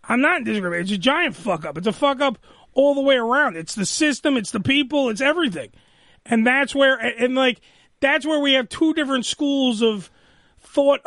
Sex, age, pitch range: male, 30-49, 235-295 Hz